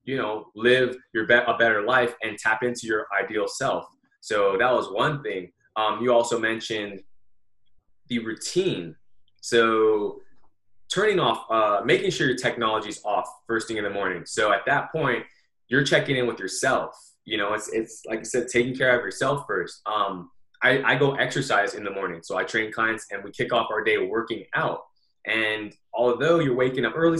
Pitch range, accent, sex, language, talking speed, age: 105-145 Hz, American, male, English, 190 wpm, 20-39